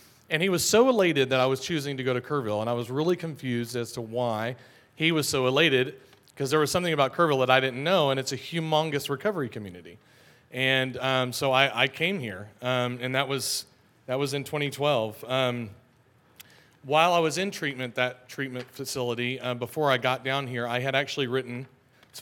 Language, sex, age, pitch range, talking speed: English, male, 40-59, 125-145 Hz, 205 wpm